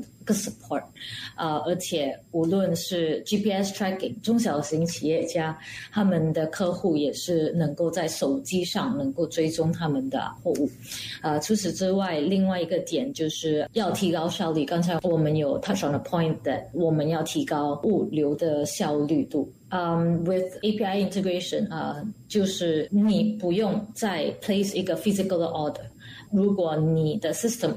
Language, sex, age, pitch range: Chinese, female, 20-39, 155-195 Hz